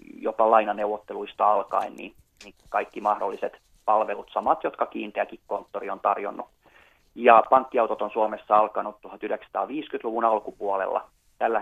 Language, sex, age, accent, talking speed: Finnish, male, 30-49, native, 115 wpm